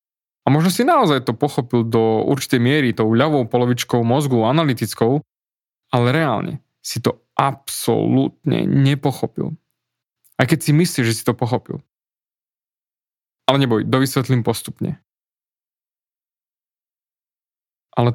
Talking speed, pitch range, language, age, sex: 110 wpm, 115-145 Hz, Slovak, 20-39, male